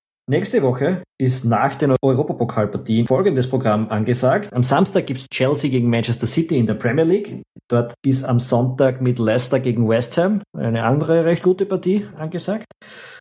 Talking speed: 165 wpm